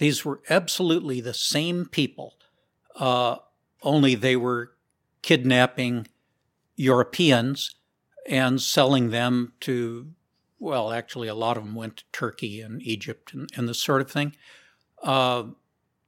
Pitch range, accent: 120-145 Hz, American